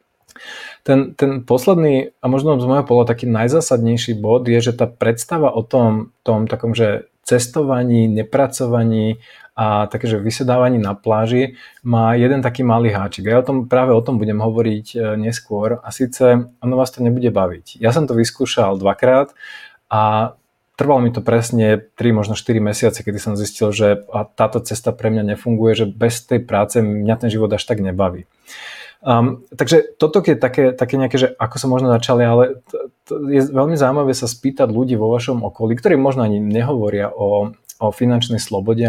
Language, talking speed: Slovak, 175 wpm